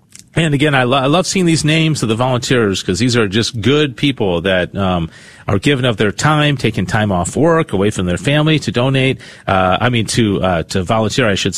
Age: 40-59